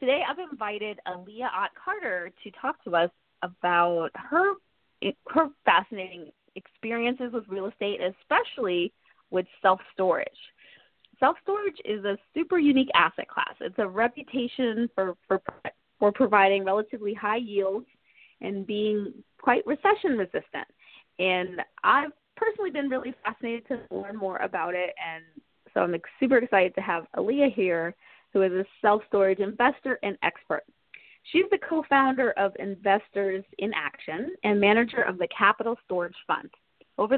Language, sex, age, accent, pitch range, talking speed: English, female, 20-39, American, 190-270 Hz, 130 wpm